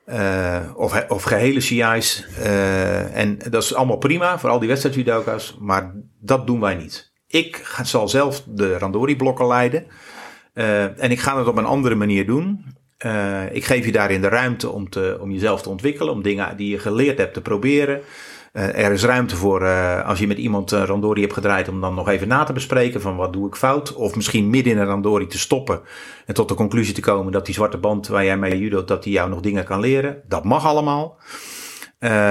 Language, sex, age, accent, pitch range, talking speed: Dutch, male, 50-69, Dutch, 95-125 Hz, 215 wpm